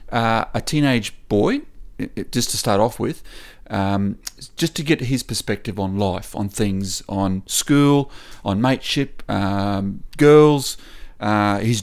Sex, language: male, English